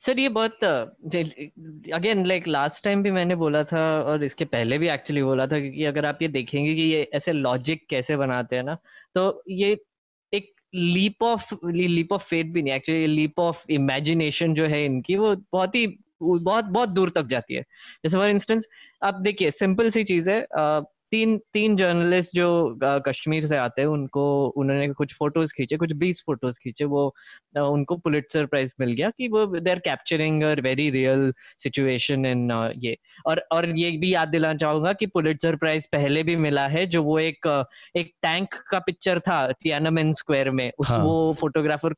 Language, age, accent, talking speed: Hindi, 20-39, native, 170 wpm